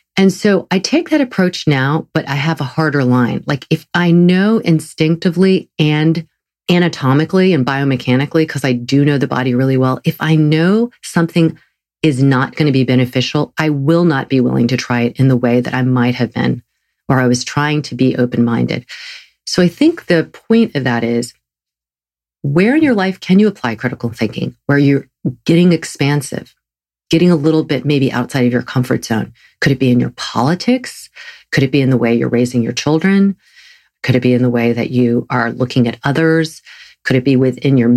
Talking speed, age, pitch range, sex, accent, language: 200 wpm, 40-59, 125-165 Hz, female, American, English